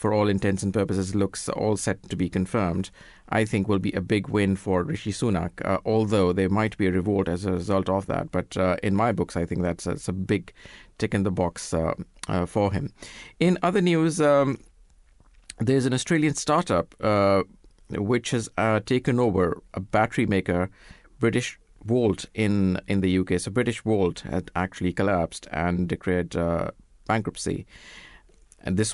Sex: male